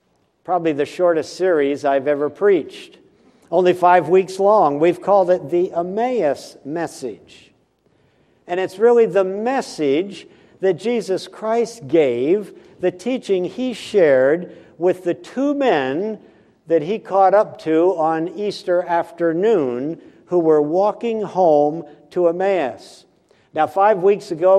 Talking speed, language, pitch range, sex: 125 wpm, English, 155-200 Hz, male